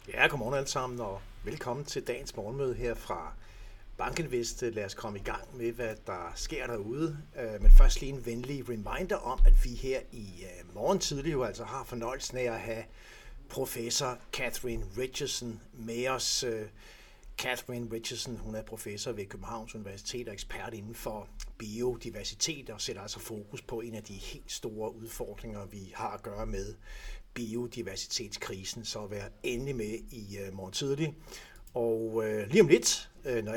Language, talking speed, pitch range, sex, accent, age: Danish, 160 wpm, 105-125 Hz, male, native, 60-79